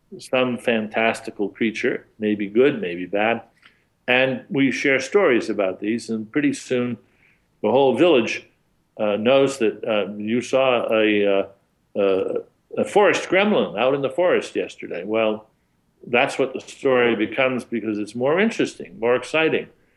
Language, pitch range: English, 110-130 Hz